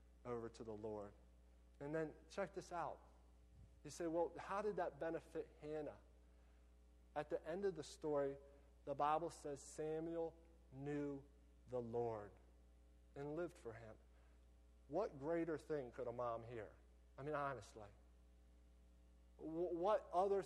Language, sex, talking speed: English, male, 135 wpm